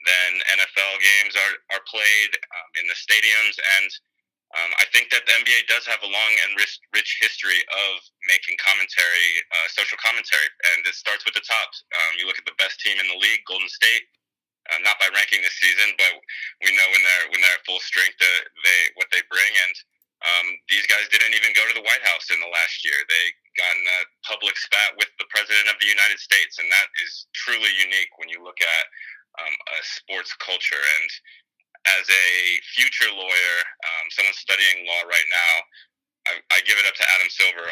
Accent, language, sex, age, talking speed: American, English, male, 20-39, 205 wpm